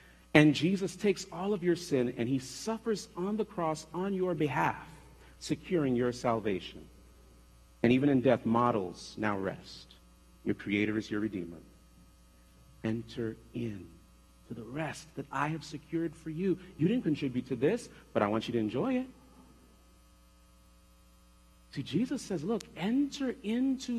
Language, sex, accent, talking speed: English, male, American, 150 wpm